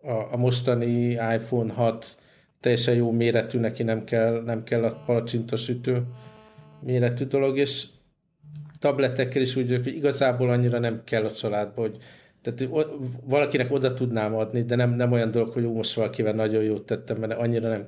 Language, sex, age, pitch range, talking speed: Hungarian, male, 50-69, 110-125 Hz, 170 wpm